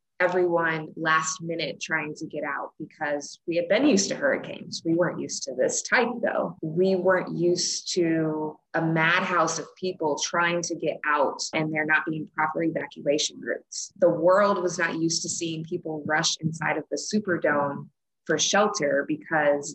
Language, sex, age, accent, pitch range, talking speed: English, female, 20-39, American, 155-180 Hz, 170 wpm